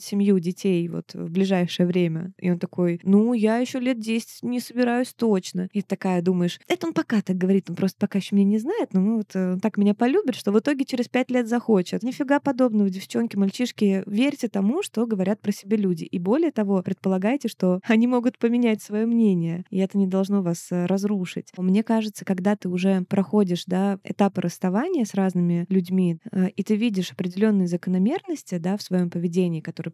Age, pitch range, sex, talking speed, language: 20-39, 185-220 Hz, female, 190 wpm, Russian